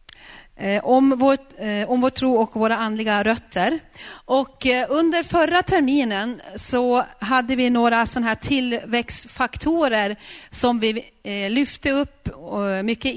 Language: Swedish